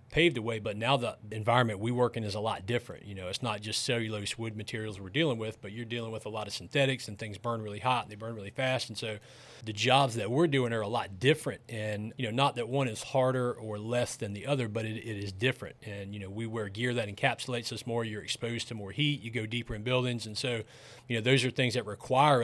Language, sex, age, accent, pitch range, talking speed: English, male, 30-49, American, 110-125 Hz, 270 wpm